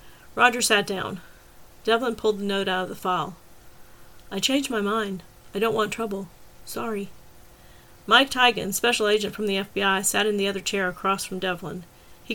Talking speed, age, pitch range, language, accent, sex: 175 wpm, 40-59, 195-260 Hz, English, American, female